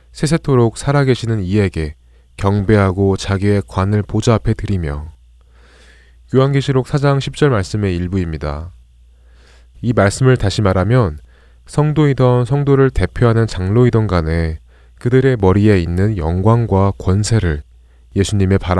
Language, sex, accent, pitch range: Korean, male, native, 80-115 Hz